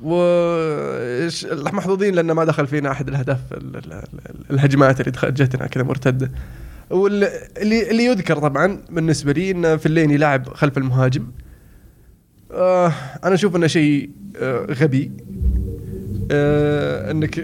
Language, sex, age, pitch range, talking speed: Arabic, male, 20-39, 135-160 Hz, 135 wpm